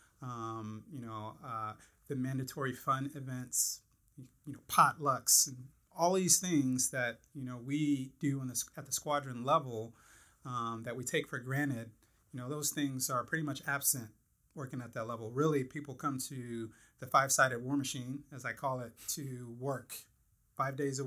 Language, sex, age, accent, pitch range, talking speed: English, male, 30-49, American, 120-145 Hz, 175 wpm